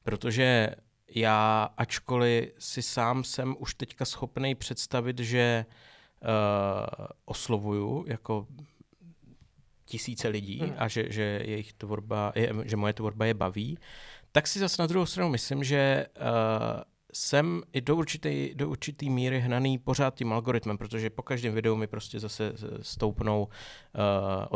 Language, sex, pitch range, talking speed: Czech, male, 110-135 Hz, 130 wpm